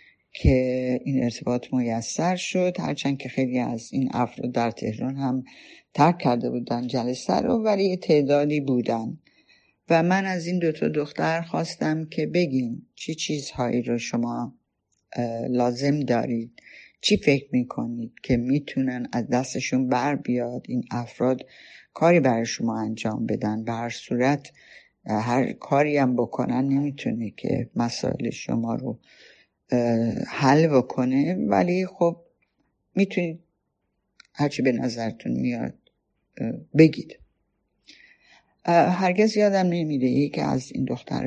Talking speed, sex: 125 wpm, female